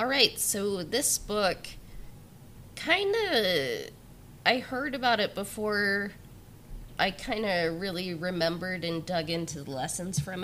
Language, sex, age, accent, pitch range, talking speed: English, female, 20-39, American, 145-185 Hz, 125 wpm